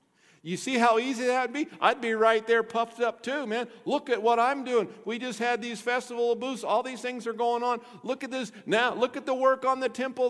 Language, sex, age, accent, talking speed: English, male, 50-69, American, 250 wpm